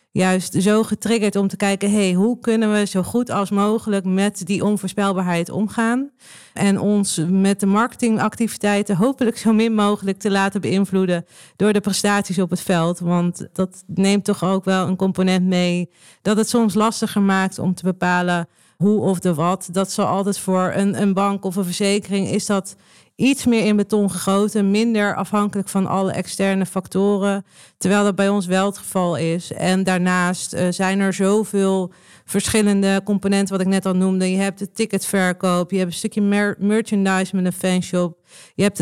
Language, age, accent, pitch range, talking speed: Dutch, 40-59, Dutch, 185-210 Hz, 175 wpm